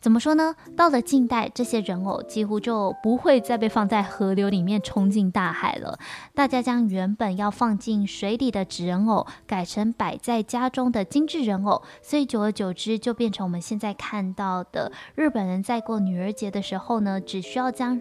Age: 10-29